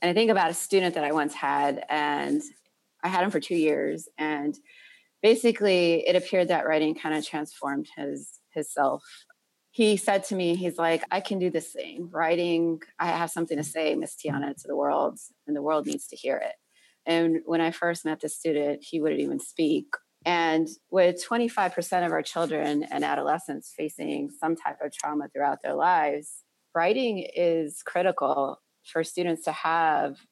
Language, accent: English, American